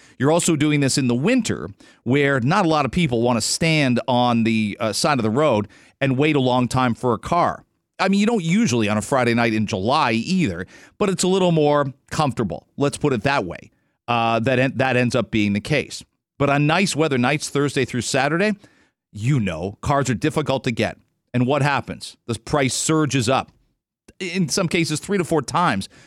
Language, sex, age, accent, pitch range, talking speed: English, male, 40-59, American, 125-165 Hz, 210 wpm